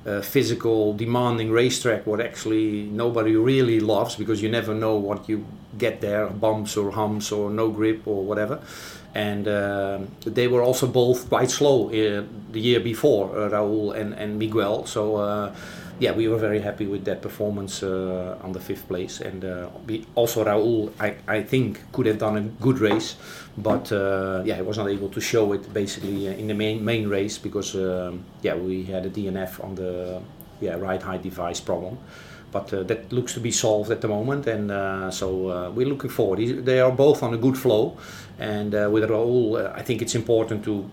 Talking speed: 190 wpm